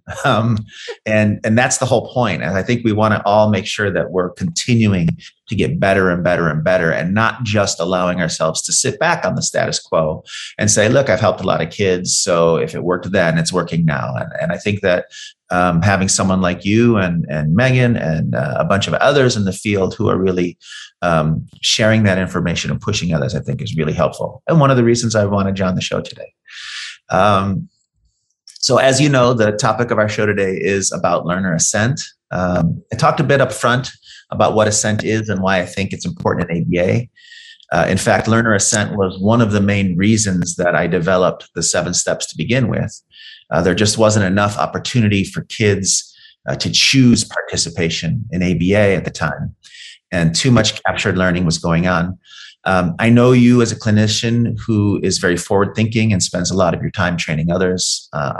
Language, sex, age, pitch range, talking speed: English, male, 30-49, 95-115 Hz, 210 wpm